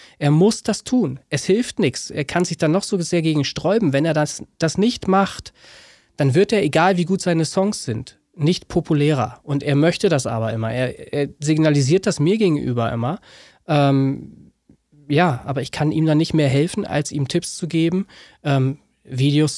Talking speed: 195 wpm